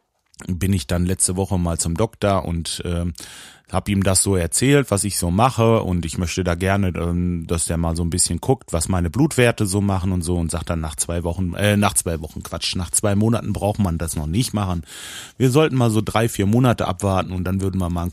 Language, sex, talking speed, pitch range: German, male, 240 wpm, 90-110 Hz